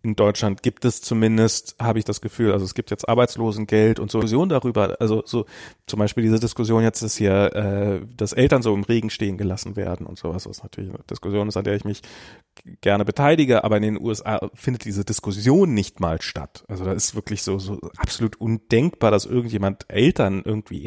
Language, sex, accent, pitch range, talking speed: German, male, German, 105-130 Hz, 205 wpm